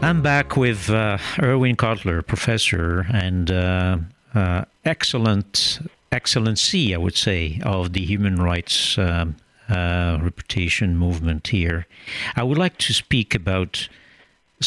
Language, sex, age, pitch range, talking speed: French, male, 60-79, 95-130 Hz, 125 wpm